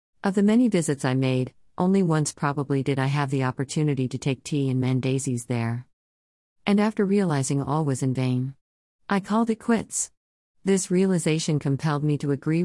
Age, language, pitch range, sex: 50-69, English, 130-165 Hz, female